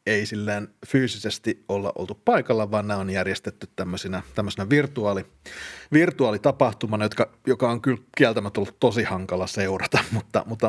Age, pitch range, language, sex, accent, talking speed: 30-49, 95-120 Hz, Finnish, male, native, 140 wpm